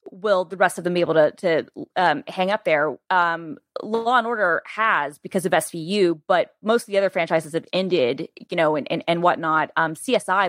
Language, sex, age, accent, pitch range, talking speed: English, female, 20-39, American, 165-195 Hz, 210 wpm